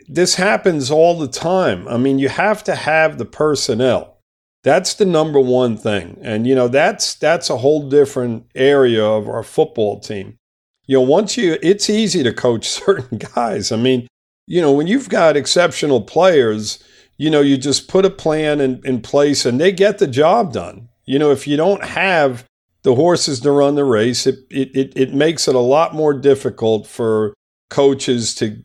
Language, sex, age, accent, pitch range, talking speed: English, male, 50-69, American, 115-150 Hz, 190 wpm